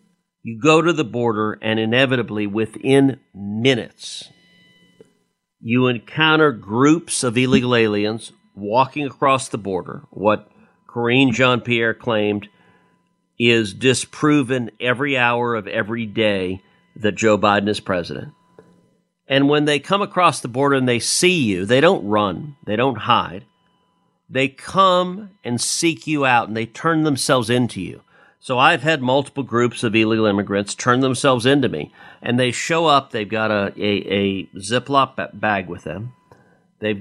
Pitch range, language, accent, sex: 110-140 Hz, English, American, male